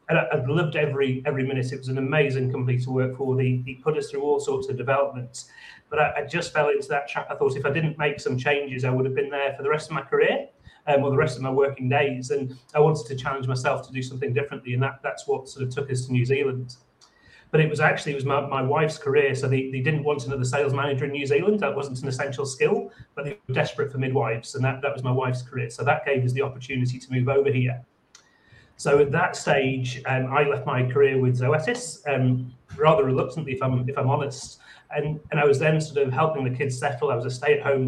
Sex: male